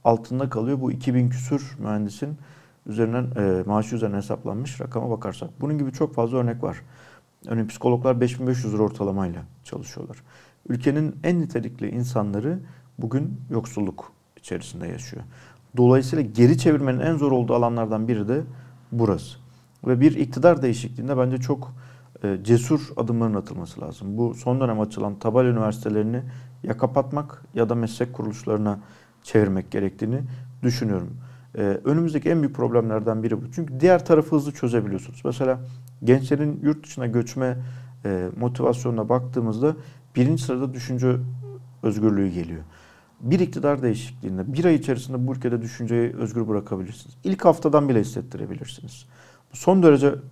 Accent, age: native, 50-69